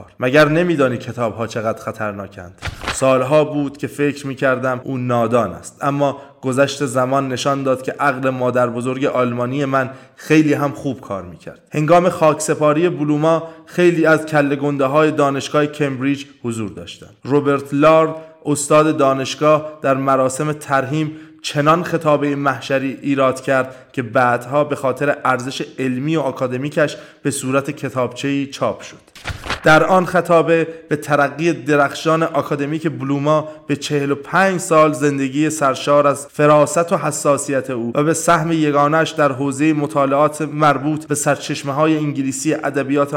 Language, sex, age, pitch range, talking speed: Persian, male, 20-39, 135-155 Hz, 135 wpm